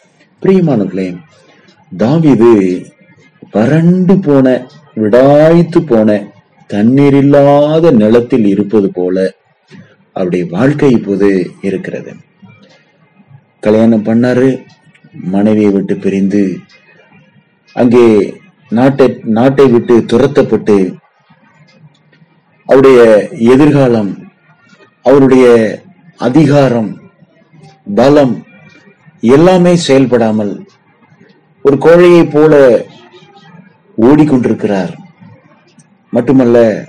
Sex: male